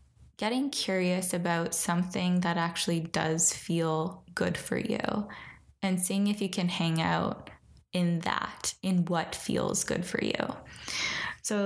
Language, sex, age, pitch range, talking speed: English, female, 10-29, 170-200 Hz, 140 wpm